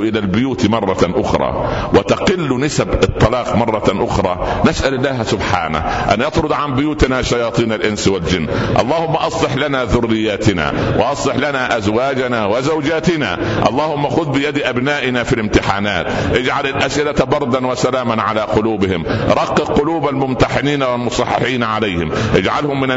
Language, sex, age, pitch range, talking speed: Arabic, male, 60-79, 105-135 Hz, 120 wpm